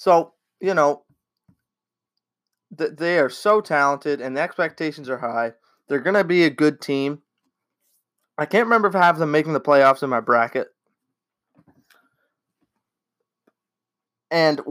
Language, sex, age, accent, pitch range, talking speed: English, male, 20-39, American, 130-165 Hz, 135 wpm